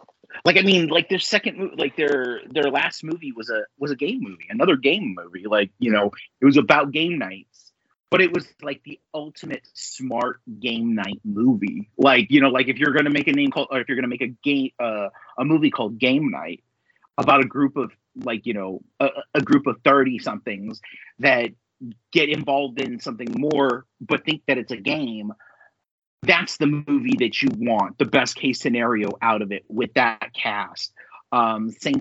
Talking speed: 200 wpm